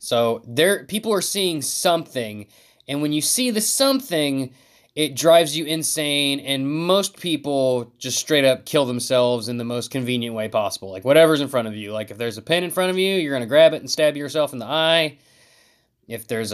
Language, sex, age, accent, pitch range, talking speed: English, male, 20-39, American, 120-165 Hz, 210 wpm